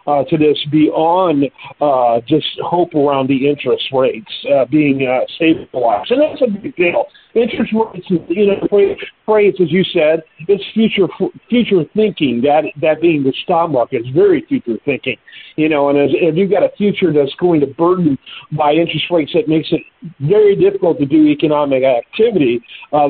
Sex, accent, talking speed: male, American, 175 wpm